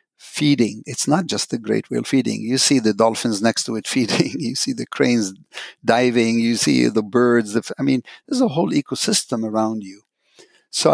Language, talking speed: English, 185 wpm